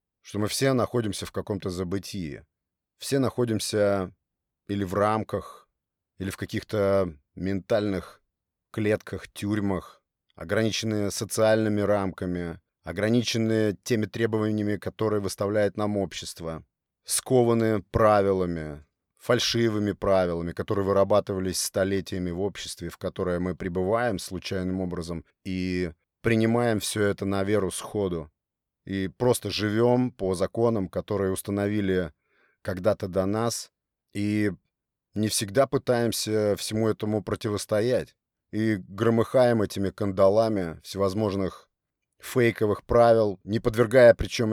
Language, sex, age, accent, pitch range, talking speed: Russian, male, 30-49, native, 95-115 Hz, 105 wpm